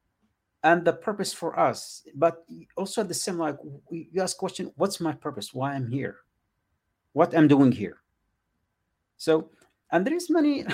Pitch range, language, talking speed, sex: 120-180 Hz, English, 155 wpm, male